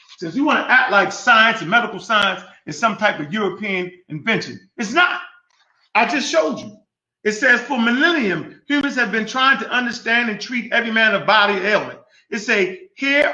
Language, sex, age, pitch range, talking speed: English, male, 30-49, 210-275 Hz, 195 wpm